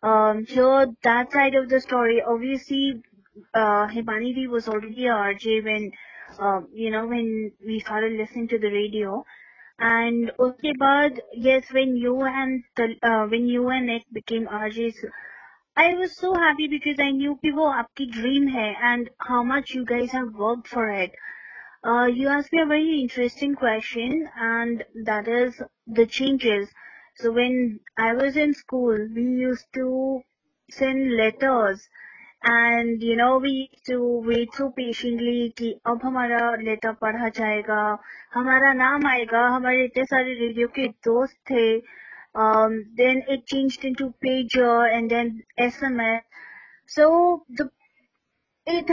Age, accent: 20-39, Indian